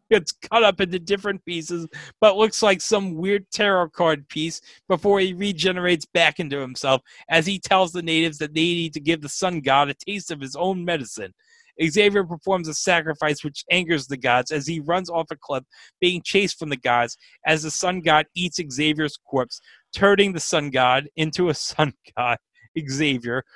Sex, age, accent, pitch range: male, 30-49, American, 145-185 Hz